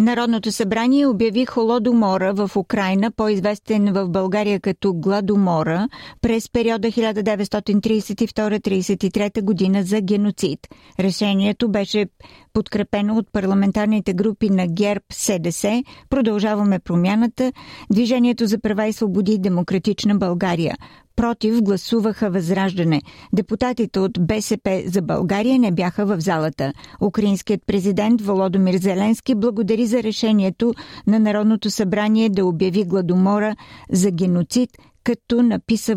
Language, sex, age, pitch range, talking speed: Bulgarian, female, 50-69, 195-225 Hz, 105 wpm